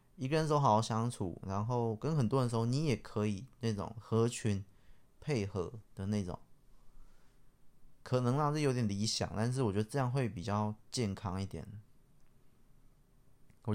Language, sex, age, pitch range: Chinese, male, 20-39, 105-130 Hz